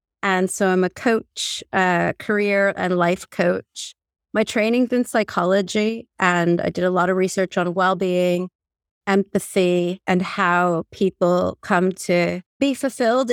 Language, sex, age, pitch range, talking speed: English, female, 30-49, 175-200 Hz, 140 wpm